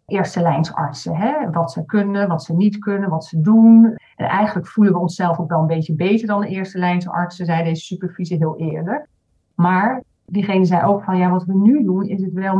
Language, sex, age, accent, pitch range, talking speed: Dutch, female, 40-59, Dutch, 170-205 Hz, 225 wpm